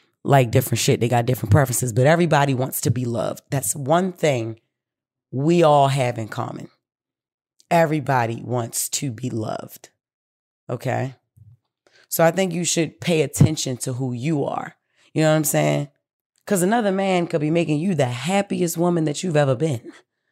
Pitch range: 135-175 Hz